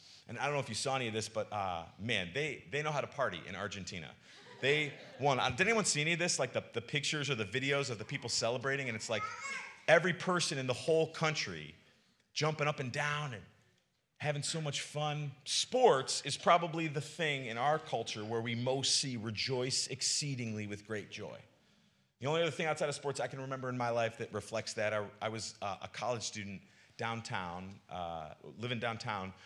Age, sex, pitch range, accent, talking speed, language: 30-49, male, 105-150 Hz, American, 210 wpm, English